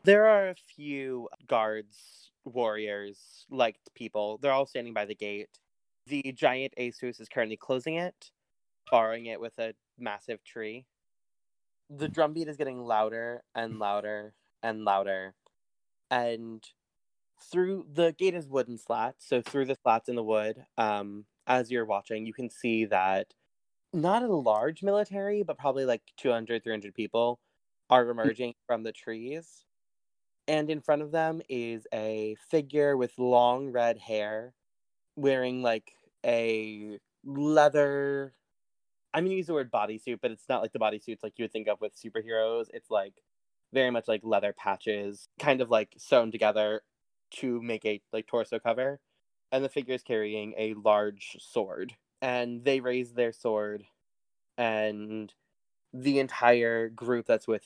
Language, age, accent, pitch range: English, 20-39, American, 110-135 Hz